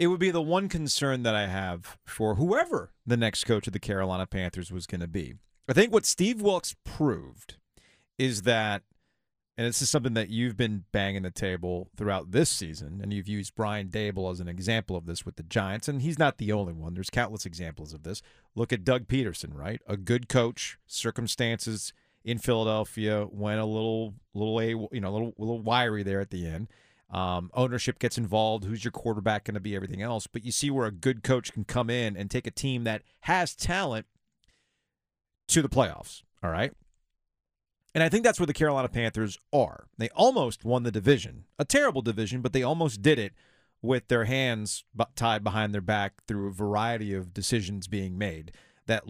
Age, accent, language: 40-59, American, English